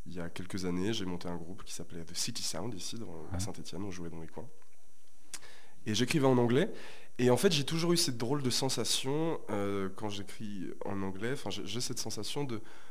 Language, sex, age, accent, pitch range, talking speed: French, male, 20-39, French, 95-125 Hz, 220 wpm